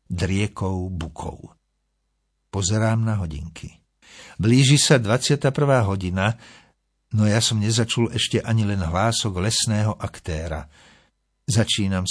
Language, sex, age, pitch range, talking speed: Slovak, male, 60-79, 95-120 Hz, 100 wpm